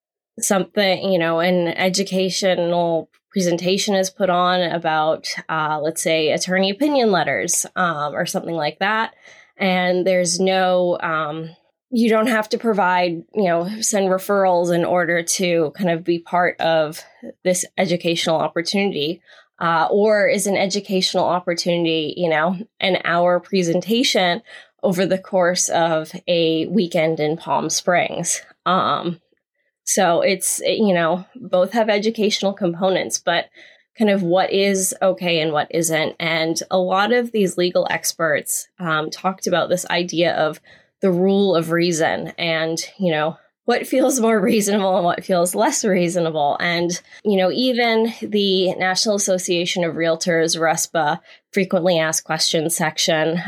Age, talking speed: 10-29, 140 wpm